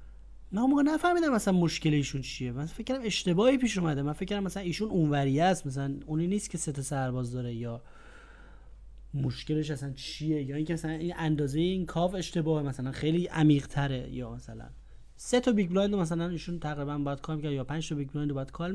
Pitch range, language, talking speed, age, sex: 130-195 Hz, Persian, 195 wpm, 30-49, male